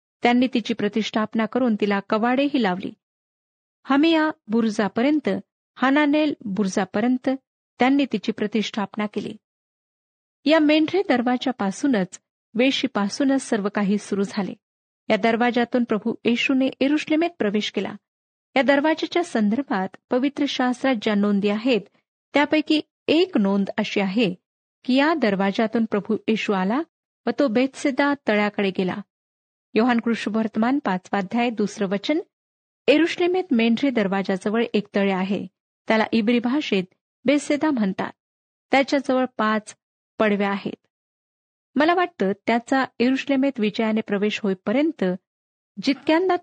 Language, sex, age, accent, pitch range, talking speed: Marathi, female, 40-59, native, 210-275 Hz, 105 wpm